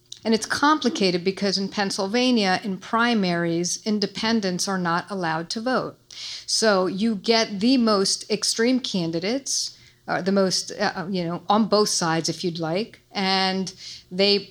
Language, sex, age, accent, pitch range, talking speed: English, female, 50-69, American, 180-205 Hz, 145 wpm